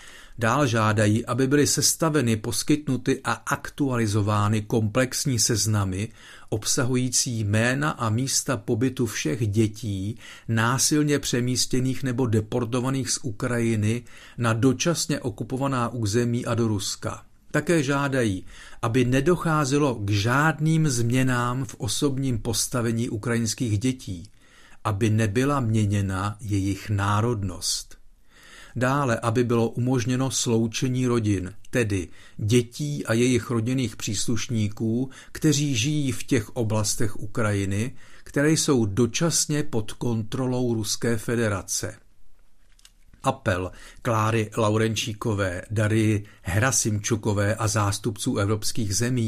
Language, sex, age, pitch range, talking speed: Czech, male, 50-69, 110-130 Hz, 100 wpm